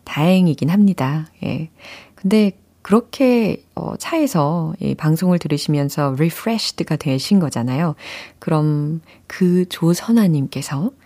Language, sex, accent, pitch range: Korean, female, native, 150-210 Hz